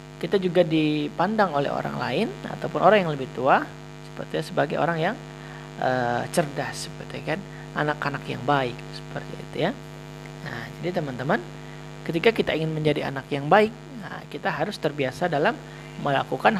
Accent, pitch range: native, 145-170 Hz